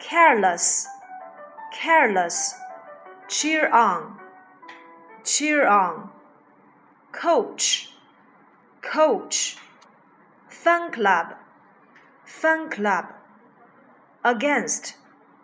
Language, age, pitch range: Chinese, 40-59, 230-310 Hz